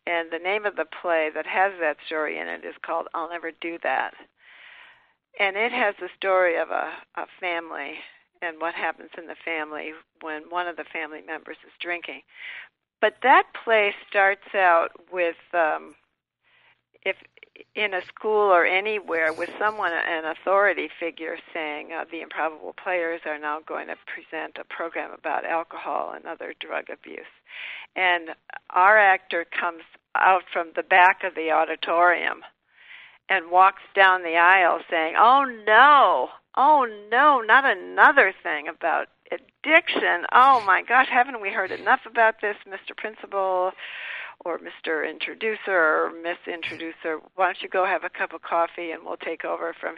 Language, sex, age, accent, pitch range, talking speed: English, female, 60-79, American, 165-215 Hz, 160 wpm